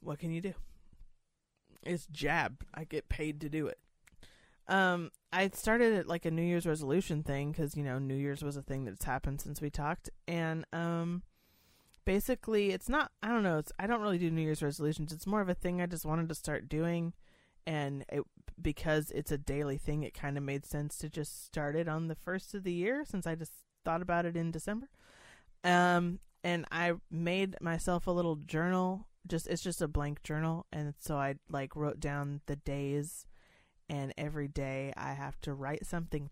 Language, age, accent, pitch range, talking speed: English, 30-49, American, 150-185 Hz, 200 wpm